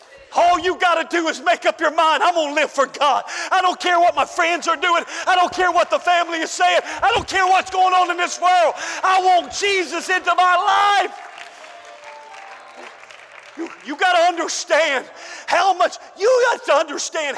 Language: English